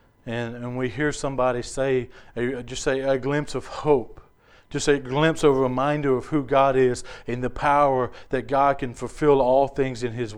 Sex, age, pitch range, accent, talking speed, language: male, 40-59, 120-145 Hz, American, 190 wpm, English